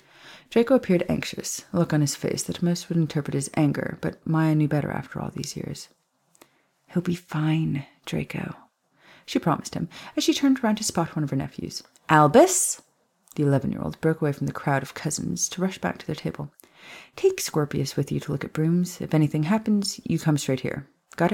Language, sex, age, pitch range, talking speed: English, female, 30-49, 140-185 Hz, 200 wpm